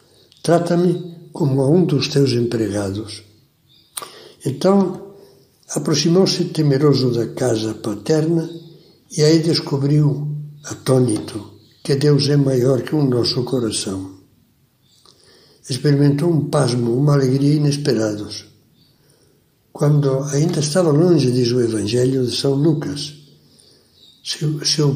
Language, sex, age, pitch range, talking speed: Portuguese, male, 60-79, 125-165 Hz, 100 wpm